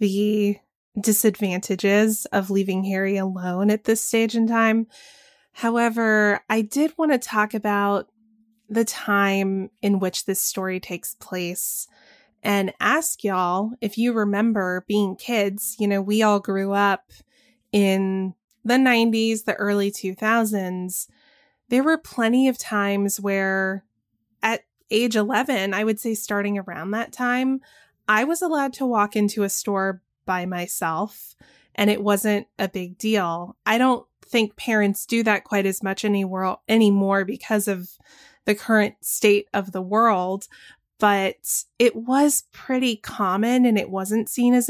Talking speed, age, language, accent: 145 wpm, 20-39, English, American